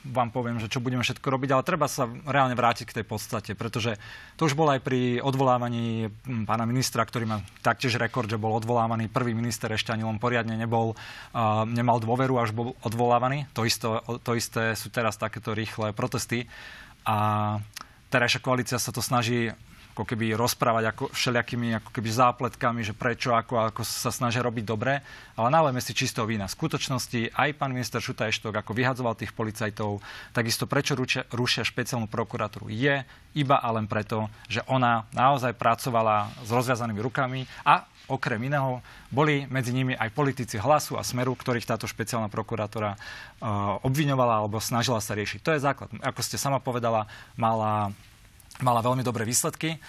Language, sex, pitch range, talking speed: Slovak, male, 110-130 Hz, 165 wpm